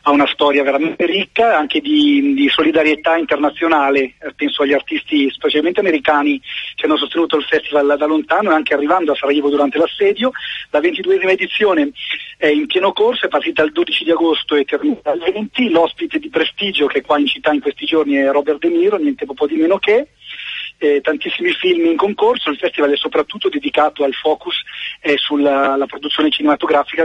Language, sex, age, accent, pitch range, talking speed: Italian, male, 40-59, native, 145-205 Hz, 185 wpm